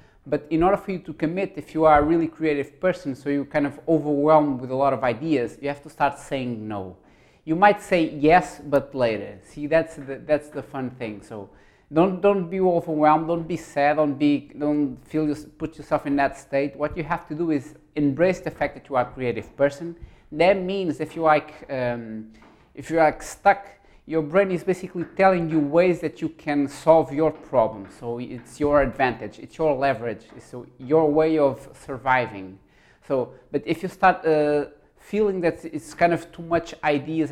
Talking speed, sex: 200 wpm, male